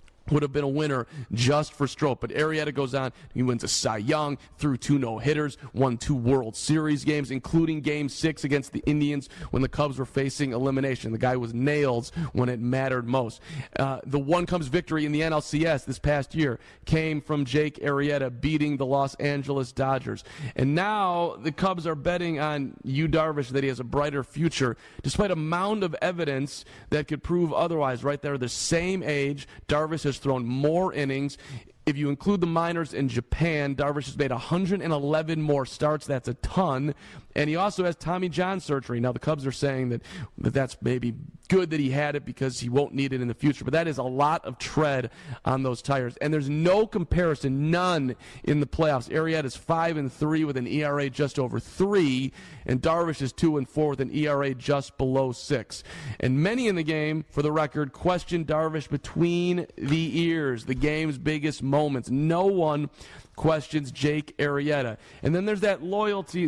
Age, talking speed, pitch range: 40-59, 190 wpm, 135-160 Hz